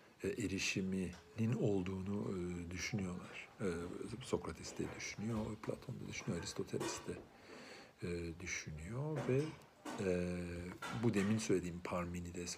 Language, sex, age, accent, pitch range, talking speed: Turkish, male, 50-69, native, 90-125 Hz, 105 wpm